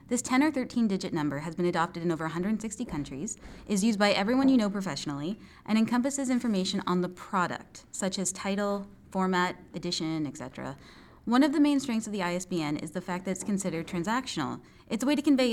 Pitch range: 165-230 Hz